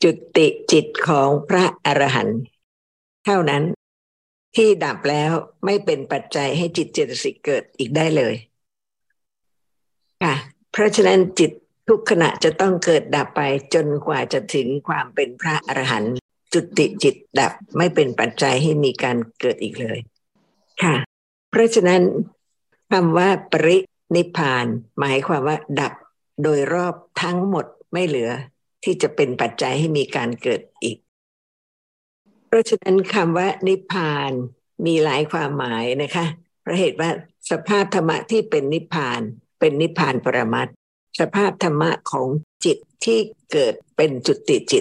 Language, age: Thai, 60-79